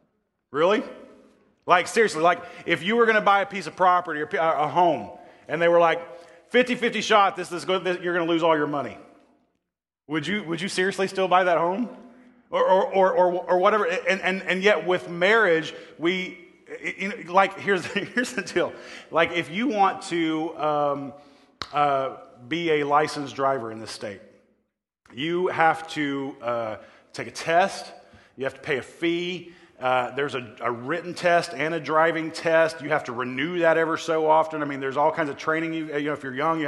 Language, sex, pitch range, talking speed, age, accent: English, male, 140-180 Hz, 200 wpm, 30-49, American